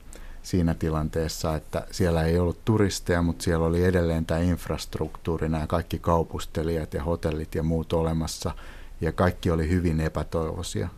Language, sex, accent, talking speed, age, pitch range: Finnish, male, native, 140 wpm, 60-79, 80-90 Hz